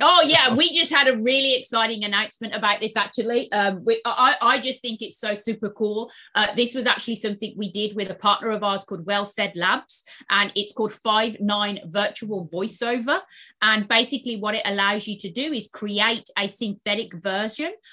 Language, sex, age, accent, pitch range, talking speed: English, female, 30-49, British, 210-270 Hz, 190 wpm